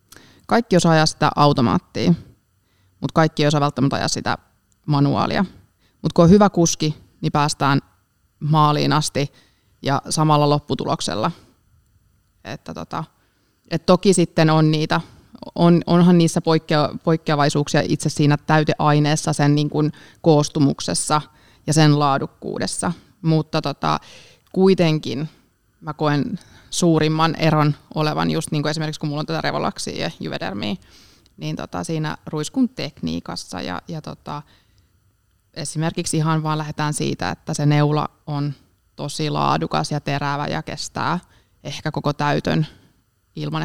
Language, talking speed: Finnish, 120 wpm